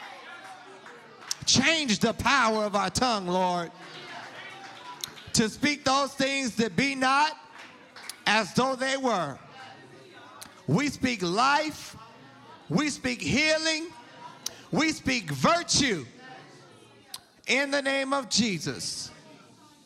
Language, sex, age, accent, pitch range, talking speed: English, male, 40-59, American, 155-230 Hz, 95 wpm